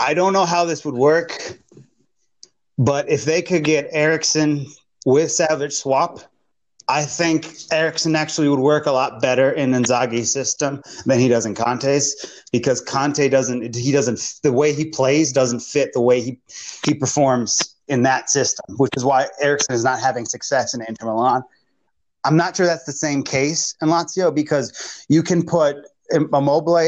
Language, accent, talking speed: English, American, 170 wpm